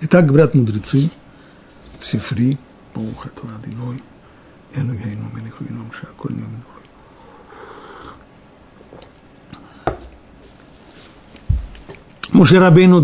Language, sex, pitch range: Russian, male, 115-150 Hz